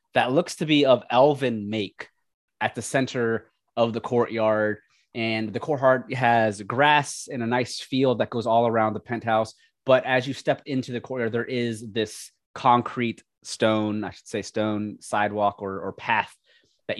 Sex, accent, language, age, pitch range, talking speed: male, American, English, 20-39, 110-135 Hz, 175 wpm